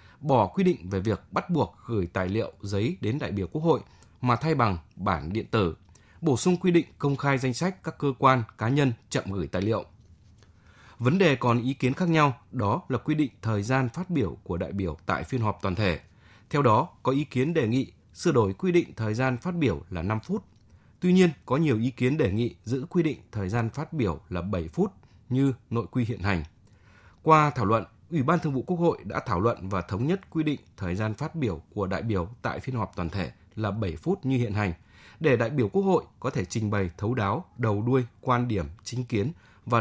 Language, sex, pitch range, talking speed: Vietnamese, male, 100-135 Hz, 235 wpm